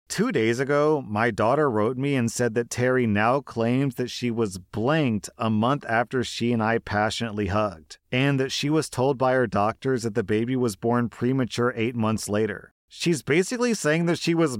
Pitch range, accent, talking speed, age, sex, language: 110-135 Hz, American, 195 wpm, 40-59, male, English